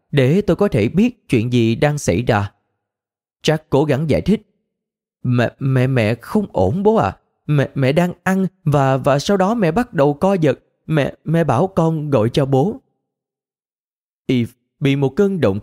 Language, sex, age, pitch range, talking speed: Vietnamese, male, 20-39, 115-165 Hz, 185 wpm